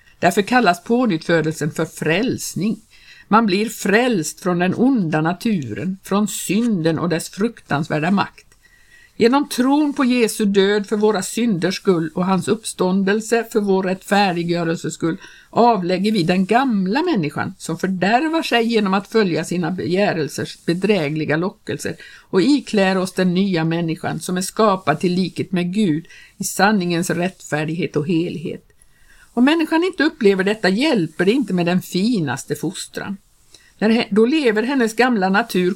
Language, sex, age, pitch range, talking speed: Swedish, female, 60-79, 175-230 Hz, 145 wpm